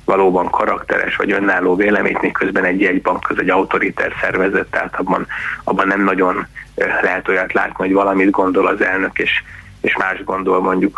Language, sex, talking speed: Hungarian, male, 170 wpm